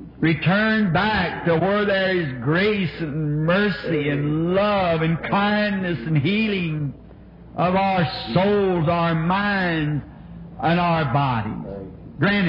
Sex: male